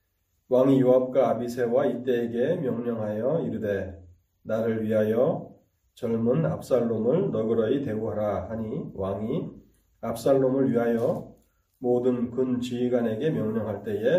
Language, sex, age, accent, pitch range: Korean, male, 30-49, native, 100-130 Hz